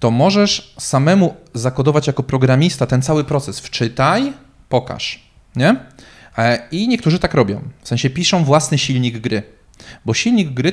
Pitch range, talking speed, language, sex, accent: 120-150 Hz, 140 wpm, Polish, male, native